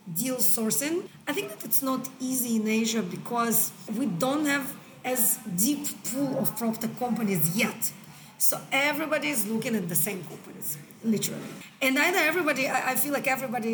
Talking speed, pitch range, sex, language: 160 wpm, 210-260 Hz, female, English